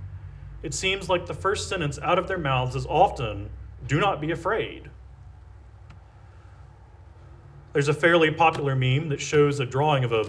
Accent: American